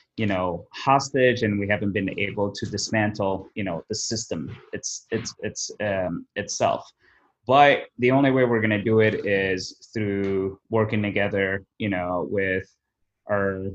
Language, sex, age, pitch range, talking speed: English, male, 20-39, 95-110 Hz, 155 wpm